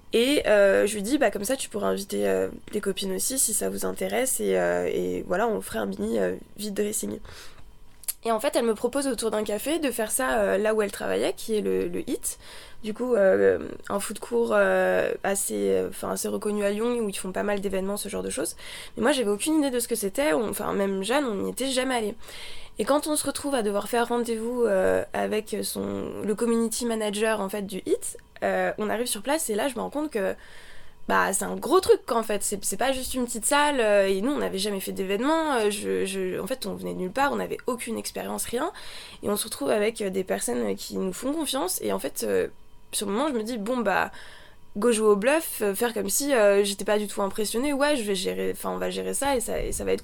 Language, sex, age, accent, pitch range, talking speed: French, female, 20-39, French, 200-255 Hz, 255 wpm